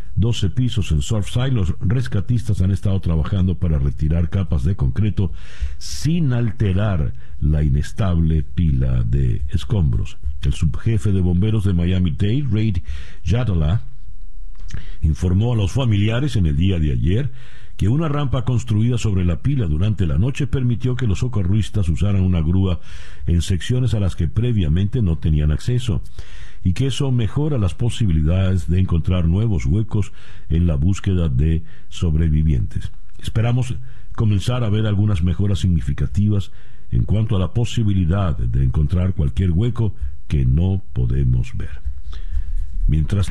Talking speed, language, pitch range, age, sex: 140 wpm, Spanish, 80-110 Hz, 60-79, male